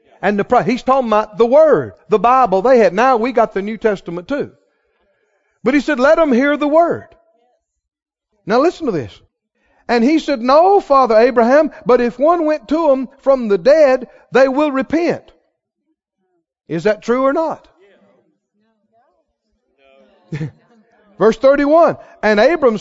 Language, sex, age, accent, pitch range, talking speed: English, male, 50-69, American, 190-275 Hz, 150 wpm